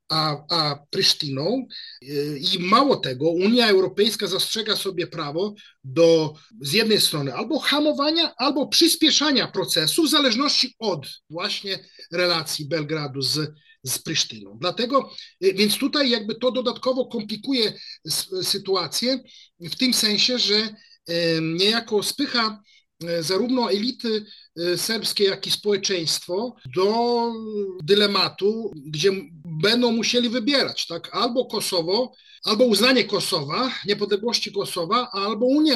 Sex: male